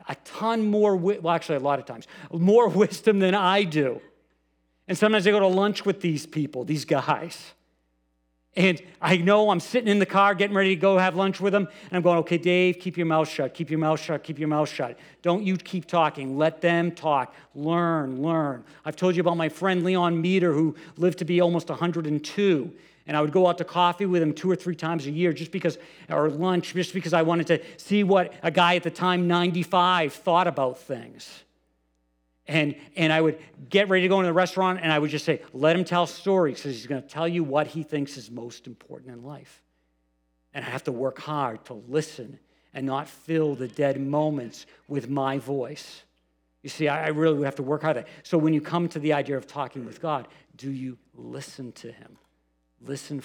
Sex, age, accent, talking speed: male, 50-69, American, 220 wpm